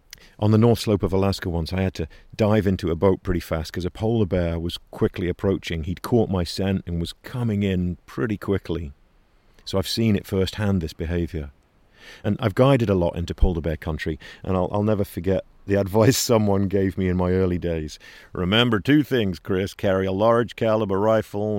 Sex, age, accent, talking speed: male, 50-69, British, 200 wpm